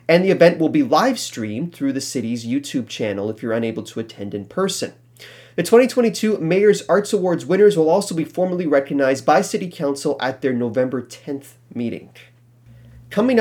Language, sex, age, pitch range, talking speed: English, male, 30-49, 125-175 Hz, 175 wpm